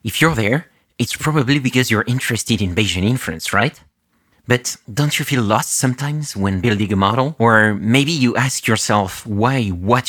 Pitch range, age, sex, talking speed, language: 100-130 Hz, 30-49, male, 170 wpm, English